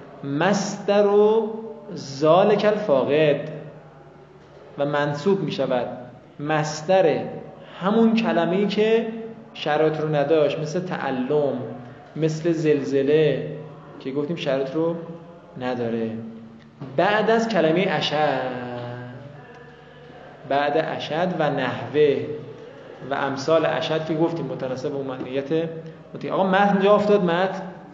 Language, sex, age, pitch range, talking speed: Persian, male, 20-39, 145-185 Hz, 90 wpm